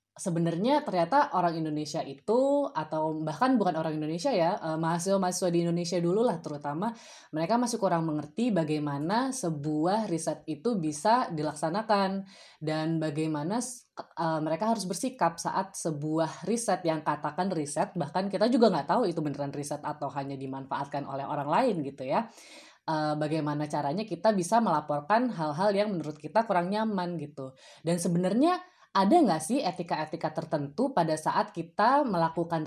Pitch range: 155-220 Hz